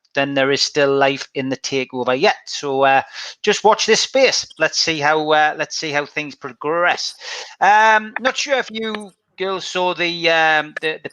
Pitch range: 140-175 Hz